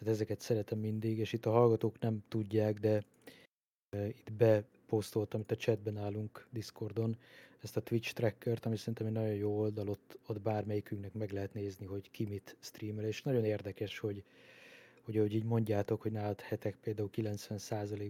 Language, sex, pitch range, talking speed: Hungarian, male, 105-115 Hz, 165 wpm